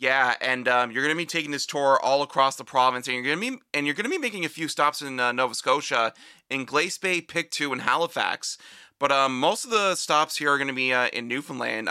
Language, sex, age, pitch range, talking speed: English, male, 30-49, 120-150 Hz, 265 wpm